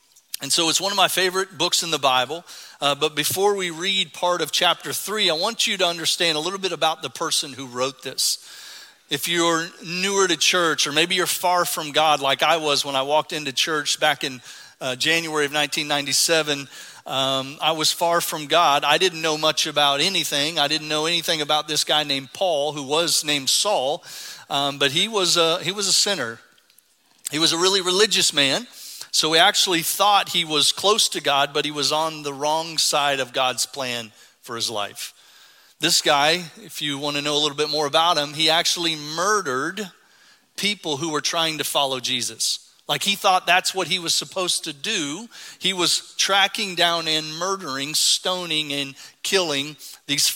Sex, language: male, English